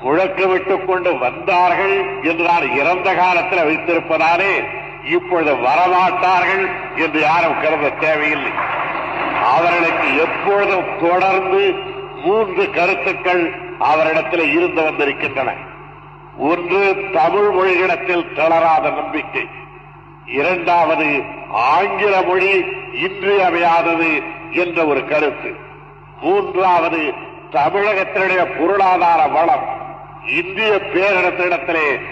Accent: native